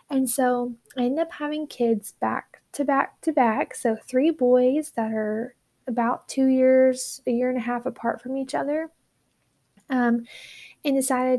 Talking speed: 170 wpm